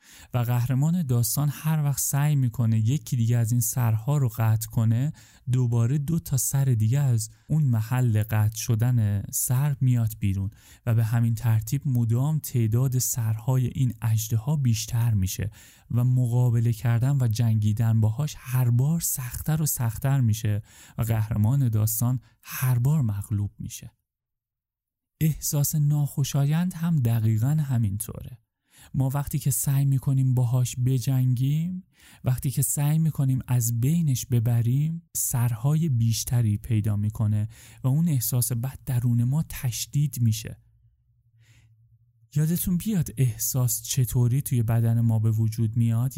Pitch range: 115-140 Hz